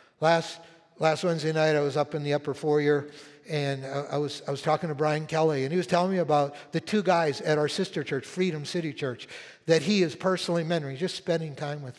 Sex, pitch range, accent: male, 135-170 Hz, American